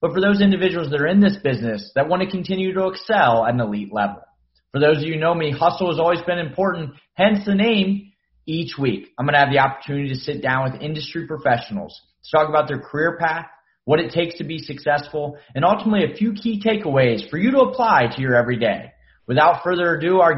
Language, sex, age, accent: English, male, 30-49, American